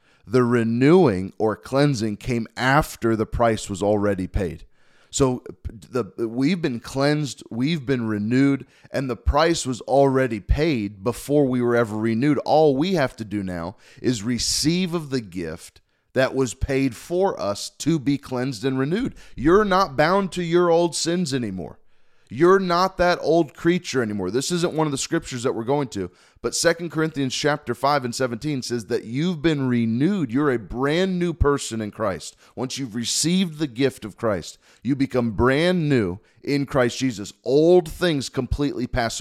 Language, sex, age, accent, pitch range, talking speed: English, male, 30-49, American, 115-155 Hz, 170 wpm